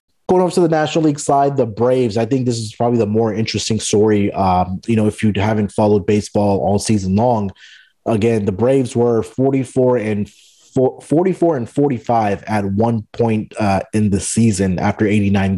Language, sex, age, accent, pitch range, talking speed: English, male, 20-39, American, 100-125 Hz, 185 wpm